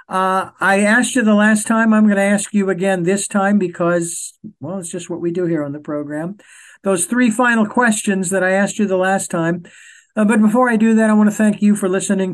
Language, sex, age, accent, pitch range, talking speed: English, male, 60-79, American, 165-200 Hz, 245 wpm